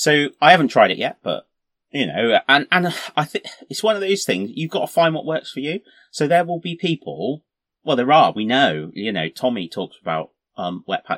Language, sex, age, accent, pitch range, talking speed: English, male, 30-49, British, 110-150 Hz, 235 wpm